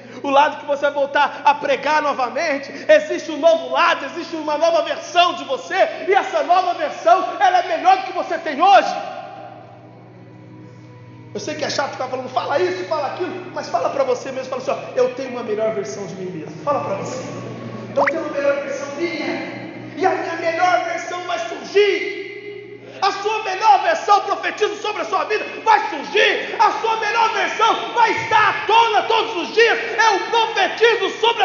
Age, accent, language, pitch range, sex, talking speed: 40-59, Brazilian, Portuguese, 280-415 Hz, male, 195 wpm